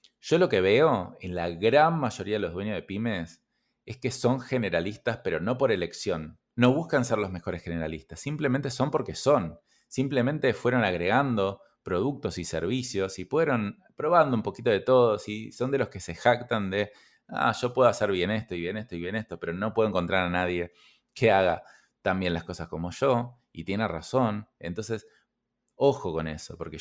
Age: 20-39